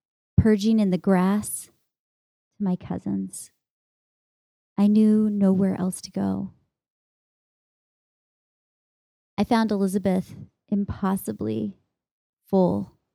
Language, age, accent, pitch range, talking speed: English, 20-39, American, 180-215 Hz, 80 wpm